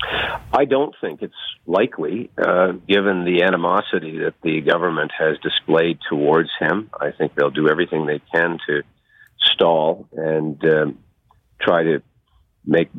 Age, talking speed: 50-69, 140 wpm